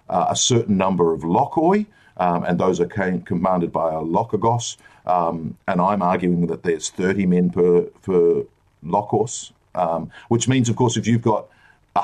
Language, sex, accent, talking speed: English, male, Australian, 185 wpm